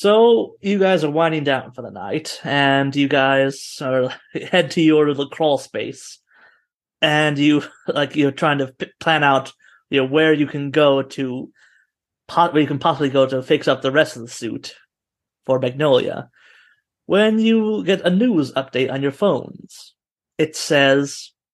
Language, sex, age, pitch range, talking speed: English, male, 30-49, 135-165 Hz, 160 wpm